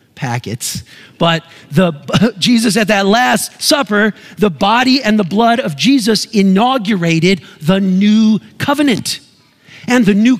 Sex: male